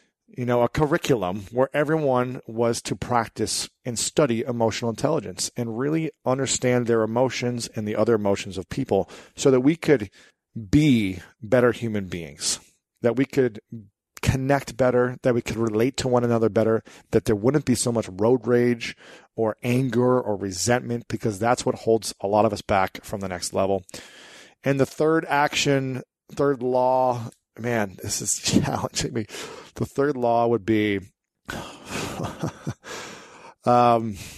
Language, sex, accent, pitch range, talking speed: English, male, American, 110-135 Hz, 150 wpm